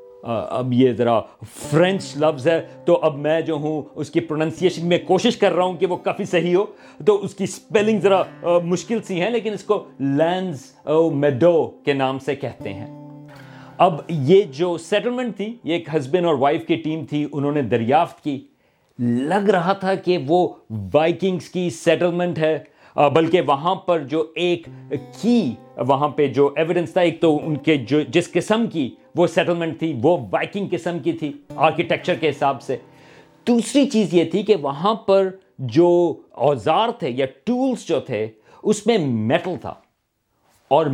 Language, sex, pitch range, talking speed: Urdu, male, 140-185 Hz, 175 wpm